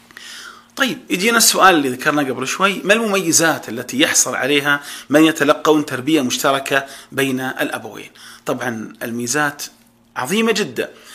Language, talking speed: Arabic, 120 wpm